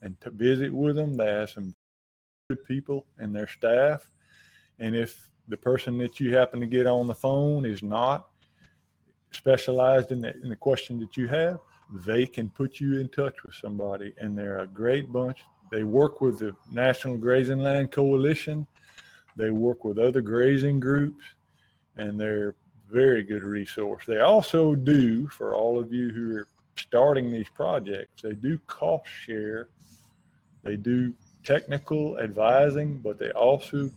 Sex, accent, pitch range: male, American, 110-140 Hz